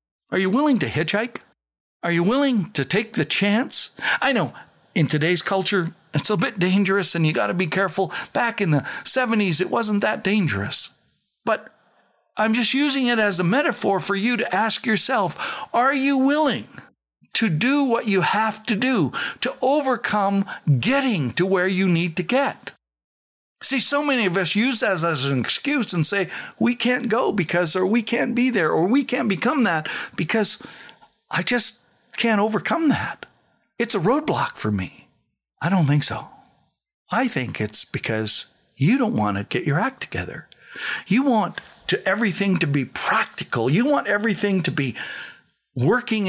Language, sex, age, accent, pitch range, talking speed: English, male, 60-79, American, 160-240 Hz, 170 wpm